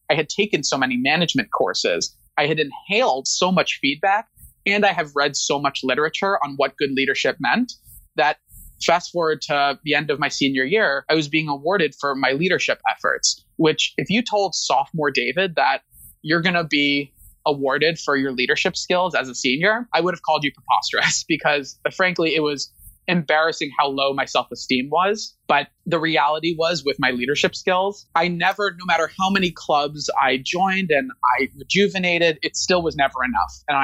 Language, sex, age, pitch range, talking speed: English, male, 20-39, 135-175 Hz, 190 wpm